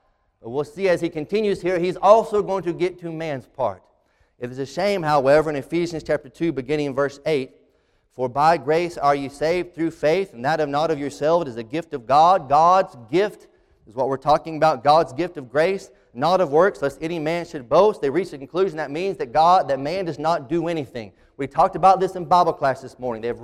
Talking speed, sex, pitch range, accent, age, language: 235 wpm, male, 155-205 Hz, American, 30-49, English